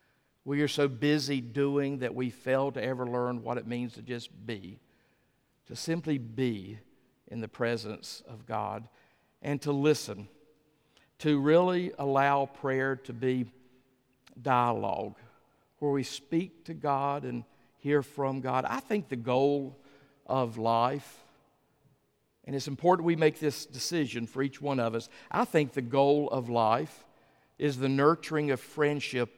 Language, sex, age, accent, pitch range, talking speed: English, male, 50-69, American, 125-150 Hz, 150 wpm